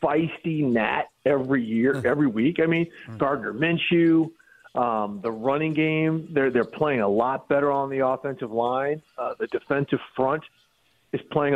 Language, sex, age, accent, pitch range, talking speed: English, male, 50-69, American, 120-155 Hz, 155 wpm